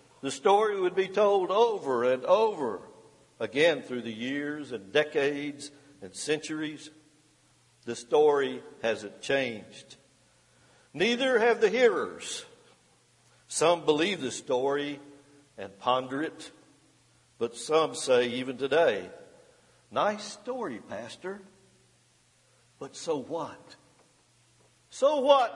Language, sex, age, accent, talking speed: English, male, 60-79, American, 105 wpm